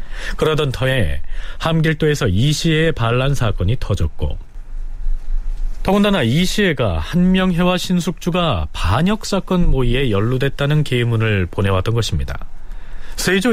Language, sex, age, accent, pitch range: Korean, male, 30-49, native, 100-160 Hz